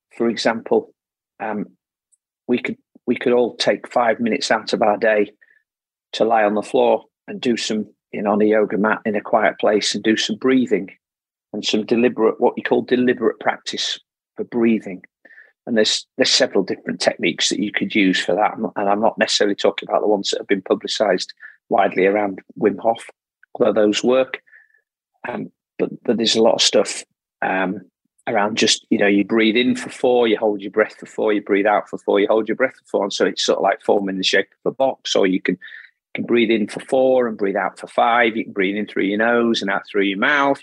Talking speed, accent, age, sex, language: 225 wpm, British, 40-59, male, English